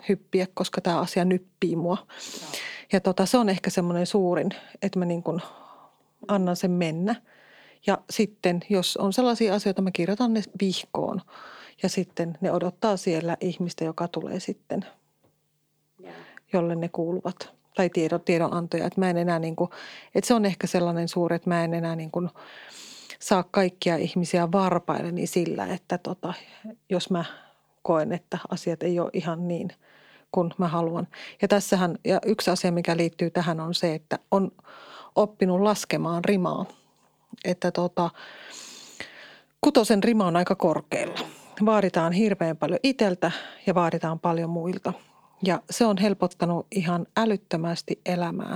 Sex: female